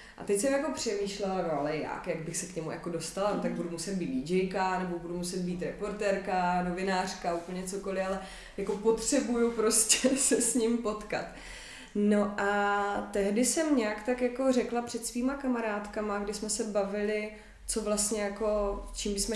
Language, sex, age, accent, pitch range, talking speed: Czech, female, 20-39, native, 185-215 Hz, 175 wpm